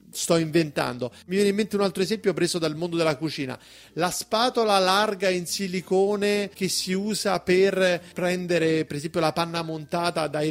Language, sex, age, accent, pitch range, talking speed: Italian, male, 30-49, native, 160-205 Hz, 170 wpm